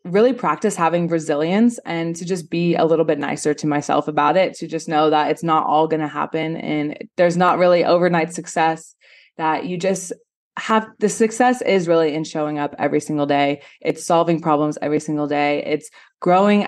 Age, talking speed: 20-39, 195 wpm